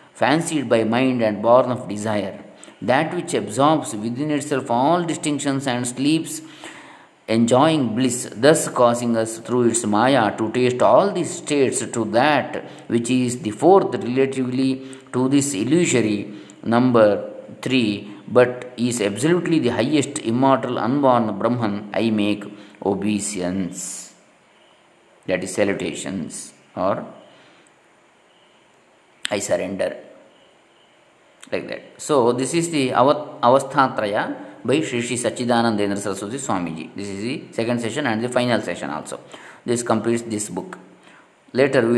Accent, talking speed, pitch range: native, 125 wpm, 110-125 Hz